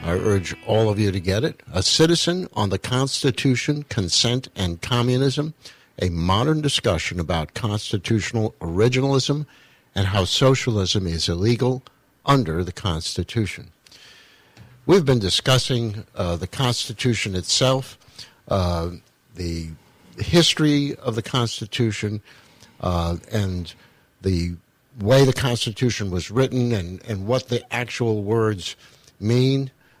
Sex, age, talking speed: male, 60-79, 115 wpm